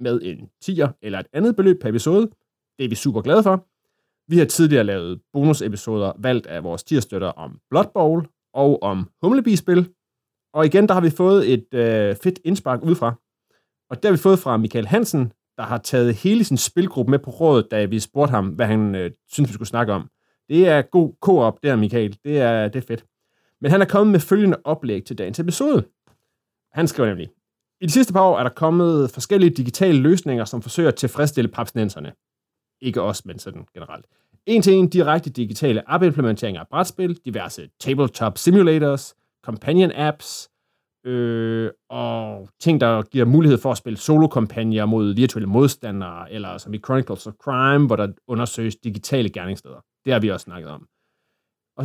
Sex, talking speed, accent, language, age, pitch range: male, 185 wpm, native, Danish, 30-49, 110-160 Hz